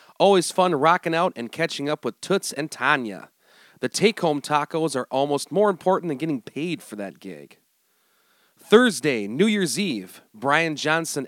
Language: English